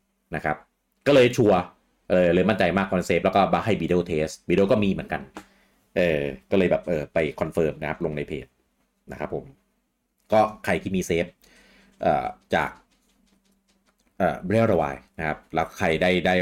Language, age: Thai, 30-49